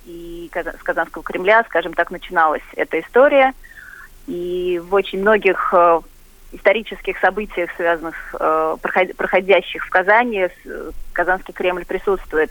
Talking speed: 105 wpm